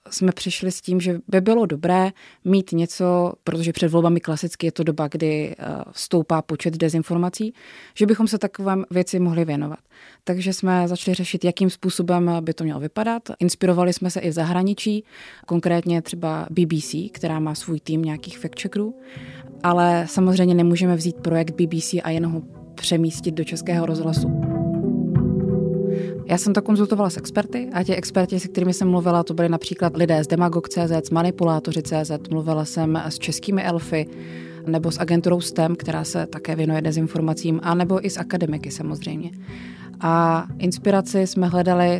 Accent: native